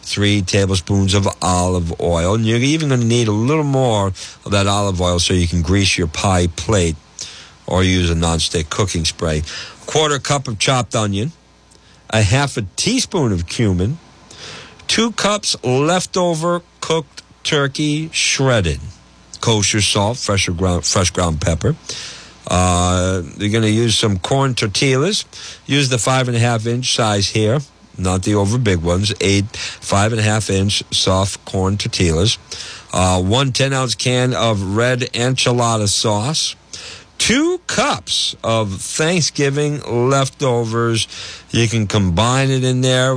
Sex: male